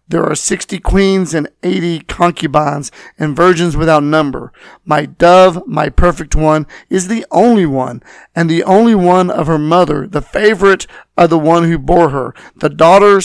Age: 40-59